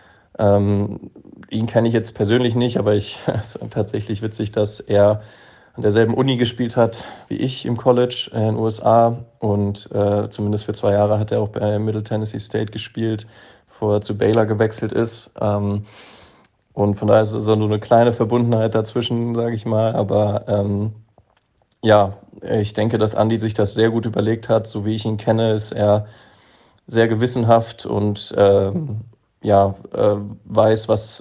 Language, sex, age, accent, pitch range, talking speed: German, male, 20-39, German, 100-110 Hz, 175 wpm